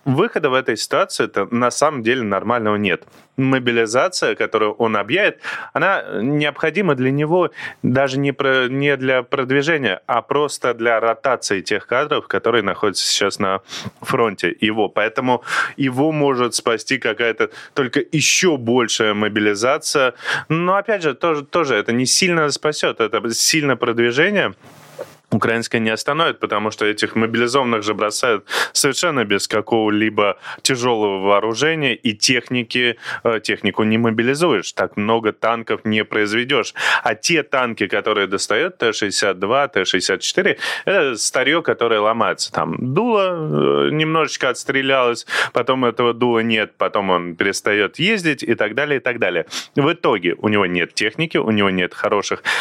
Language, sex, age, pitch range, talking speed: Russian, male, 20-39, 110-140 Hz, 135 wpm